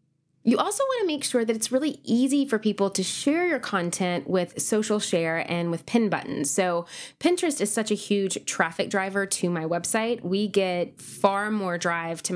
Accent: American